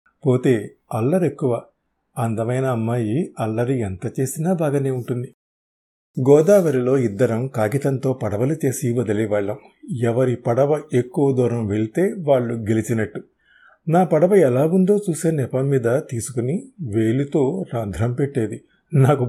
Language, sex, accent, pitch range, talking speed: Telugu, male, native, 115-145 Hz, 105 wpm